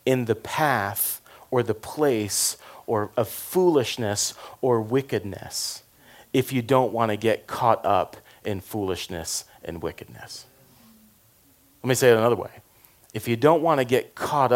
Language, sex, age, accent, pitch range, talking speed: English, male, 40-59, American, 105-130 Hz, 150 wpm